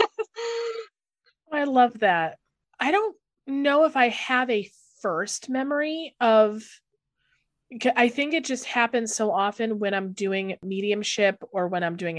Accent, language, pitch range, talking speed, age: American, English, 180-240 Hz, 140 wpm, 30-49